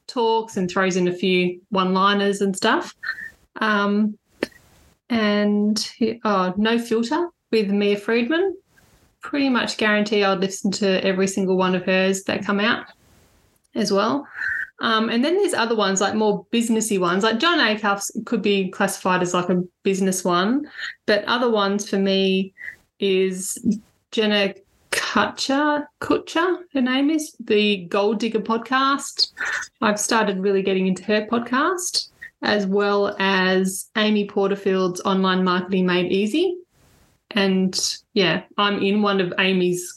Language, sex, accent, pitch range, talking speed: English, female, Australian, 185-225 Hz, 140 wpm